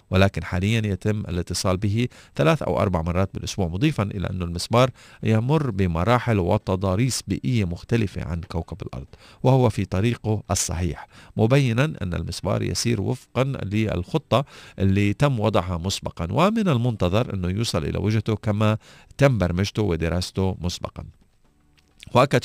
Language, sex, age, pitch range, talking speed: Arabic, male, 40-59, 90-120 Hz, 130 wpm